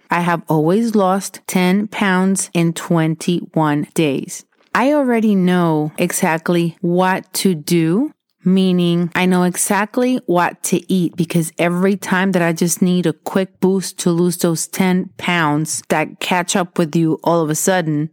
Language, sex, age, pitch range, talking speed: English, female, 30-49, 165-195 Hz, 155 wpm